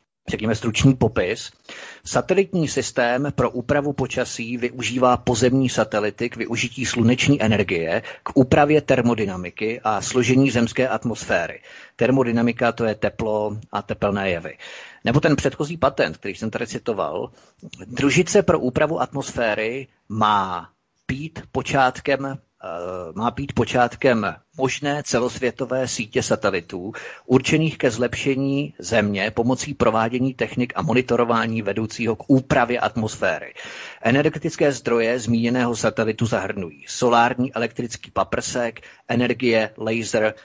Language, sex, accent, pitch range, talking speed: Czech, male, native, 115-130 Hz, 110 wpm